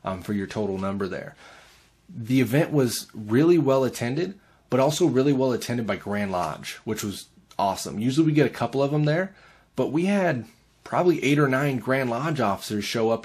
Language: English